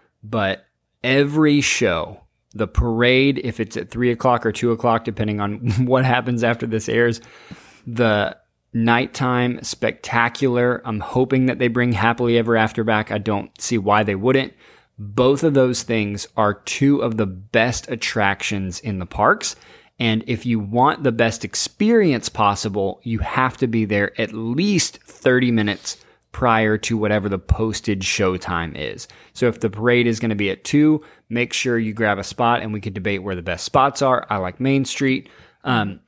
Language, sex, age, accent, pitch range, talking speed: English, male, 20-39, American, 105-125 Hz, 175 wpm